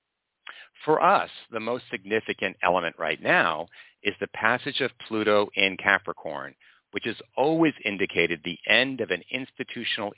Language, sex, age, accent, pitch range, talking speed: English, male, 50-69, American, 100-125 Hz, 140 wpm